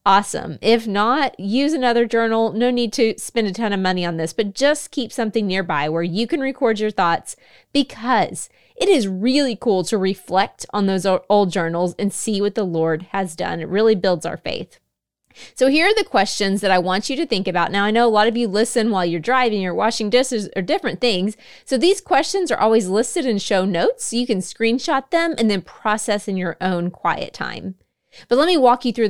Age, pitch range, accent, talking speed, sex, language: 20-39, 190-240 Hz, American, 220 wpm, female, English